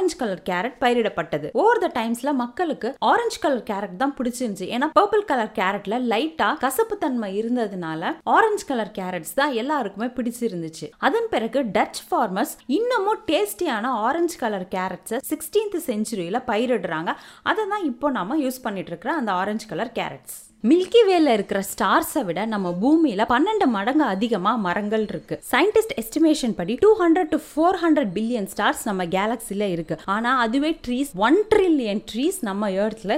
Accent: native